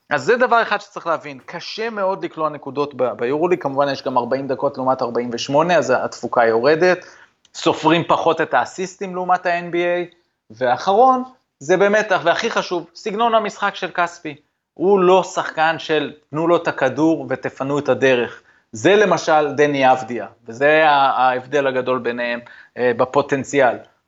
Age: 20-39